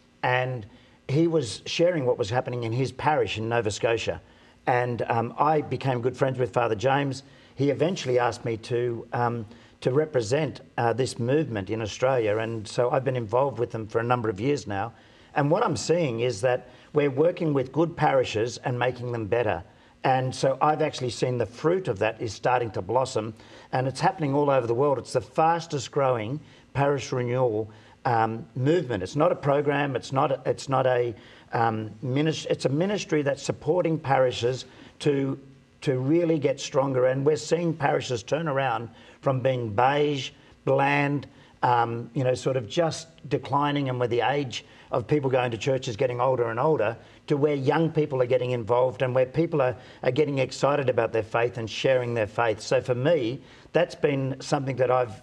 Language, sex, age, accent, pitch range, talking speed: English, male, 50-69, Australian, 120-145 Hz, 190 wpm